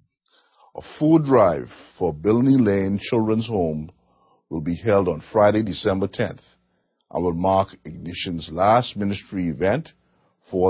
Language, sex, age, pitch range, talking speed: English, male, 50-69, 85-110 Hz, 130 wpm